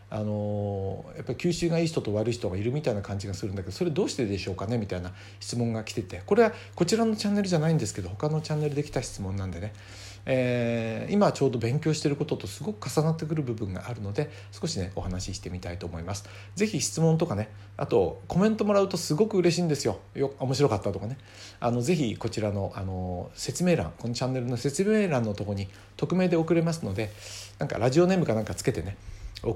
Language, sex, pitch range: Japanese, male, 100-150 Hz